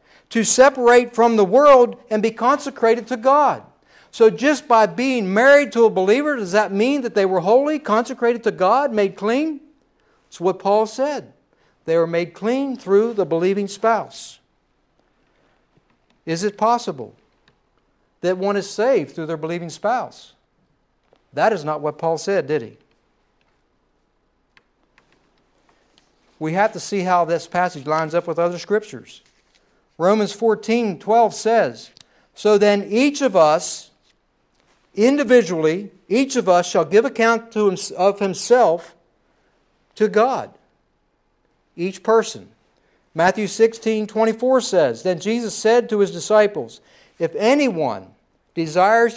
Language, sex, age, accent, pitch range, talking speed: English, male, 60-79, American, 175-235 Hz, 130 wpm